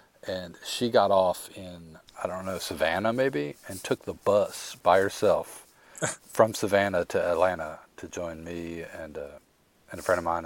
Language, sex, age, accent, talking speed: English, male, 40-59, American, 170 wpm